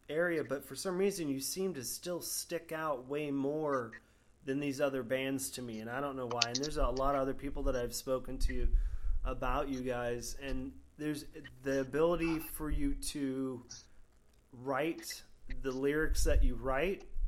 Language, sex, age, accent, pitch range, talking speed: English, male, 30-49, American, 125-145 Hz, 175 wpm